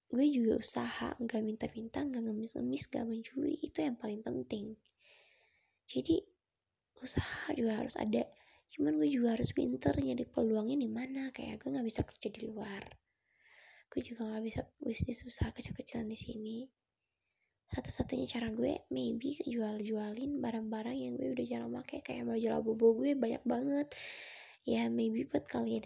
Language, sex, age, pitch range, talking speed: Indonesian, female, 20-39, 220-280 Hz, 150 wpm